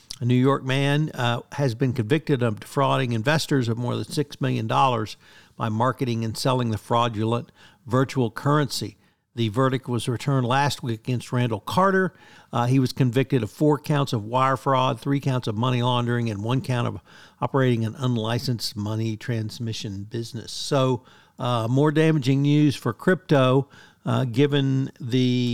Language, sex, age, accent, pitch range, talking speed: English, male, 60-79, American, 120-140 Hz, 160 wpm